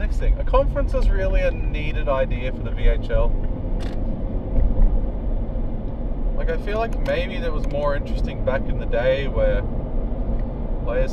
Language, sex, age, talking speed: English, male, 20-39, 145 wpm